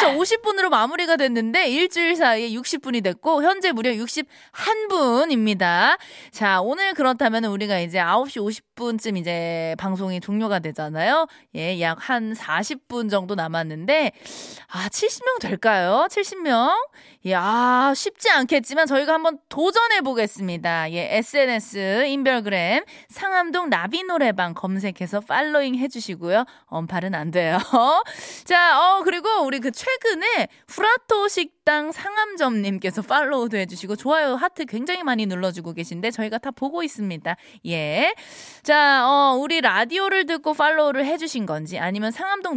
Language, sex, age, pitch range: Korean, female, 20-39, 195-320 Hz